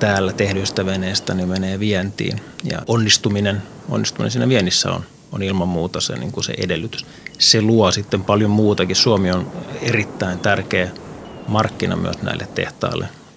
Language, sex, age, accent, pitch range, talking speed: Finnish, male, 30-49, native, 95-115 Hz, 150 wpm